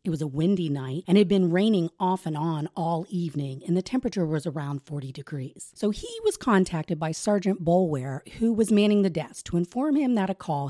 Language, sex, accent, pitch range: English, female, American, 155-200 Hz